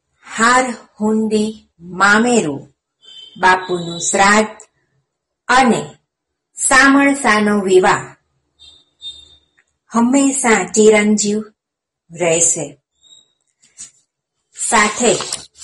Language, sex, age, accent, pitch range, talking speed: Gujarati, female, 50-69, native, 170-230 Hz, 45 wpm